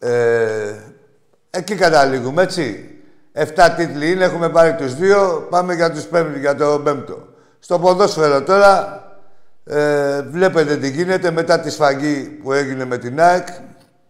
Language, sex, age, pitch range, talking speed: Greek, male, 60-79, 125-165 Hz, 140 wpm